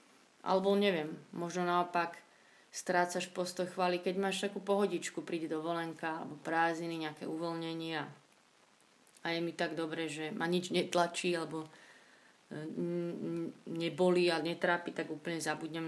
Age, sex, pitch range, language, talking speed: 30-49, female, 160-185 Hz, Slovak, 125 wpm